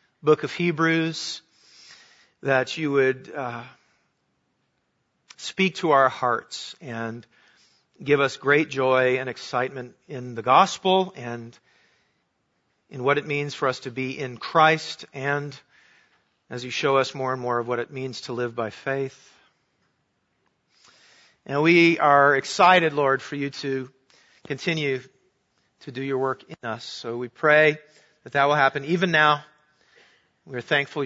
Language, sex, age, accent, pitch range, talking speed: English, male, 40-59, American, 120-145 Hz, 145 wpm